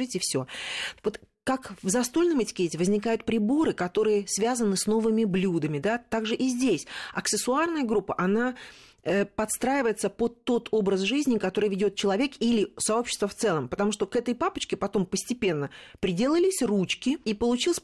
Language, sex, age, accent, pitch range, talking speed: Russian, female, 40-59, native, 180-240 Hz, 145 wpm